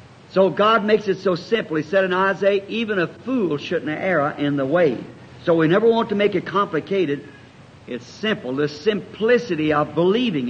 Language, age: English, 60-79